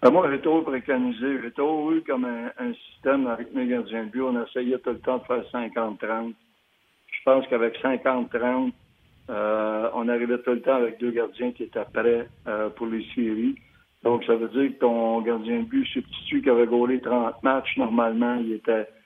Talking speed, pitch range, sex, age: 195 wpm, 115-135 Hz, male, 60-79